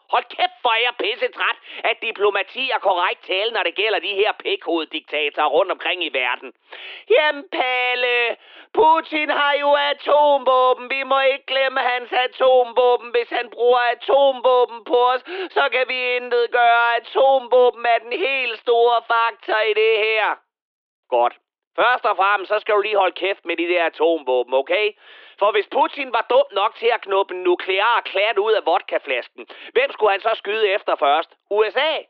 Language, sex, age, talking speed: Danish, male, 30-49, 170 wpm